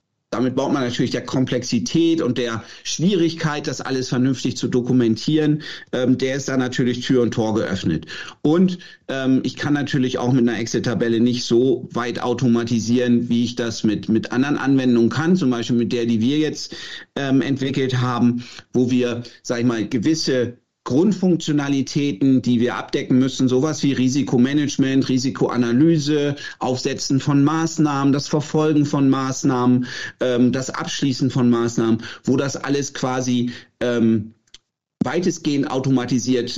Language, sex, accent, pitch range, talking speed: German, male, German, 120-140 Hz, 145 wpm